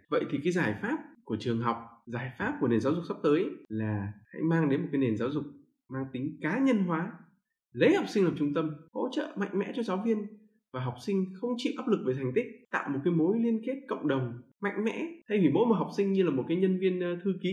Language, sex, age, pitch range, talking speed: Vietnamese, male, 20-39, 130-210 Hz, 265 wpm